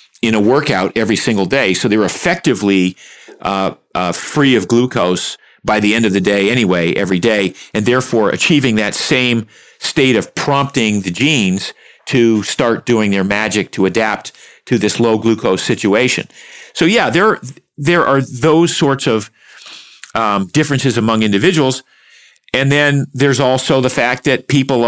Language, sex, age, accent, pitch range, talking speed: English, male, 40-59, American, 105-135 Hz, 155 wpm